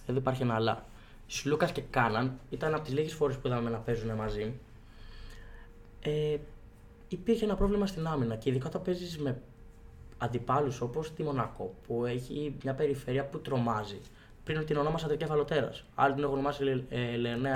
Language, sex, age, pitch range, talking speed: Greek, male, 20-39, 115-145 Hz, 165 wpm